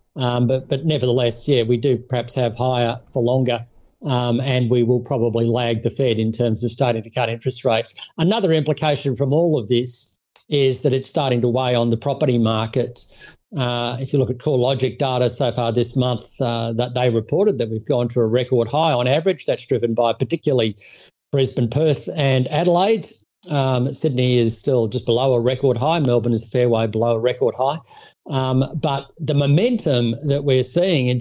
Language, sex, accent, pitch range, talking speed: English, male, Australian, 120-145 Hz, 195 wpm